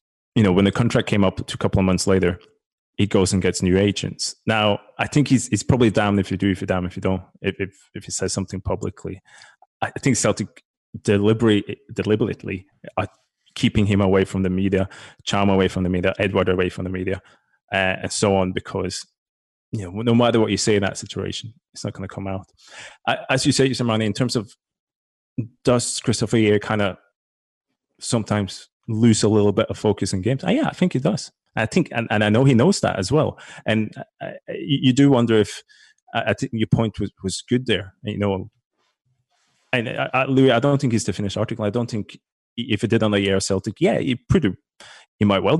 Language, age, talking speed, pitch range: English, 20-39, 220 wpm, 95-120 Hz